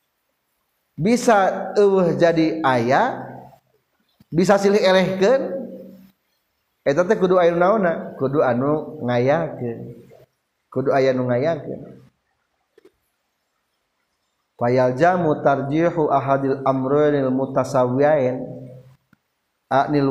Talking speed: 80 wpm